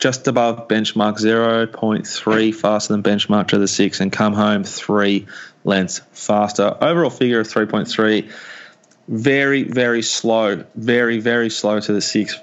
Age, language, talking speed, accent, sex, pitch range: 20-39, English, 140 wpm, Australian, male, 110-130 Hz